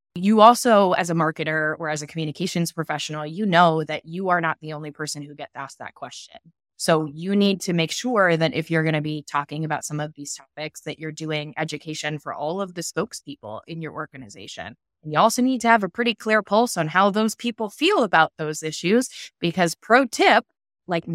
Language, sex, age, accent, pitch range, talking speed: English, female, 20-39, American, 150-195 Hz, 215 wpm